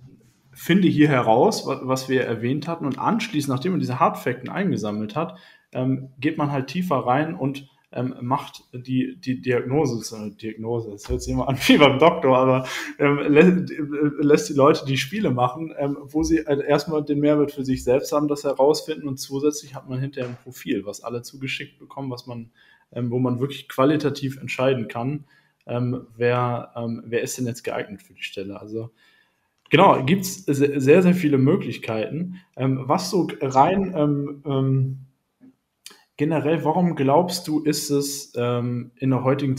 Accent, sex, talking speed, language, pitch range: German, male, 155 wpm, German, 125-145 Hz